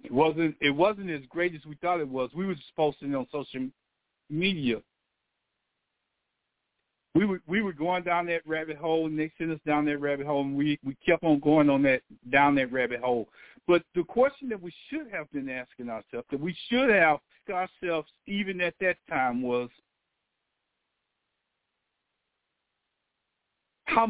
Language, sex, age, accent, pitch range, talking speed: English, male, 50-69, American, 150-210 Hz, 175 wpm